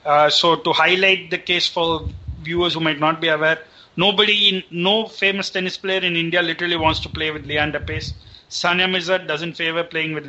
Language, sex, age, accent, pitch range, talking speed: English, male, 30-49, Indian, 155-175 Hz, 200 wpm